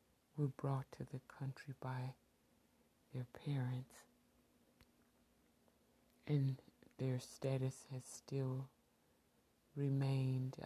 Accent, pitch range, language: American, 125-150 Hz, English